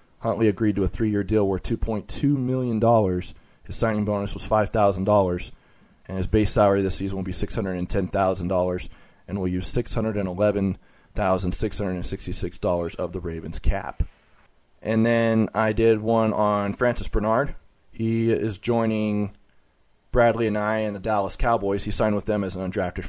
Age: 30-49